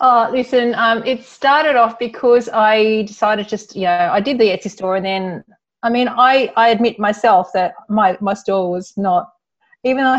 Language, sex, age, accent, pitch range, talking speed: English, female, 30-49, Australian, 180-225 Hz, 195 wpm